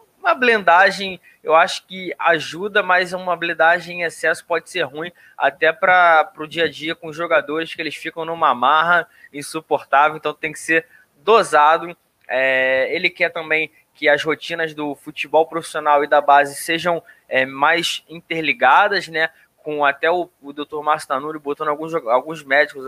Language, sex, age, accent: Portuguese, male, 20-39, Brazilian